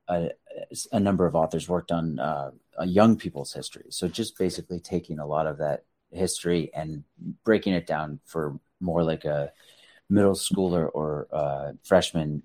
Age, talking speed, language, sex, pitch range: 30-49, 165 wpm, English, male, 80-95 Hz